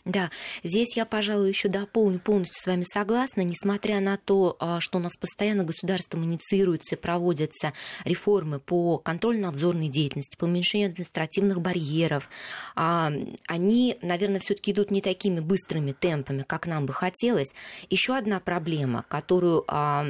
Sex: female